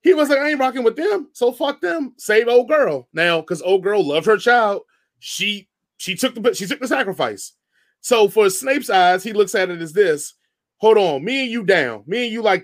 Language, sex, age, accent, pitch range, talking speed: English, male, 20-39, American, 190-265 Hz, 235 wpm